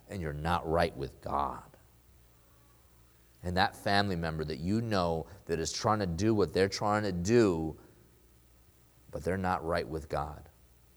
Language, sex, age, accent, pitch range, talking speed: English, male, 30-49, American, 75-95 Hz, 160 wpm